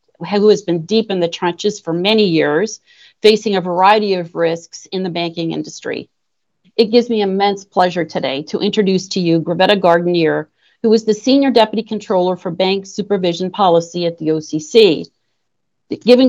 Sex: female